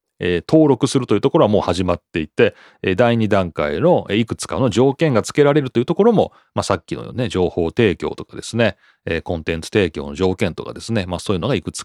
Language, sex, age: Japanese, male, 30-49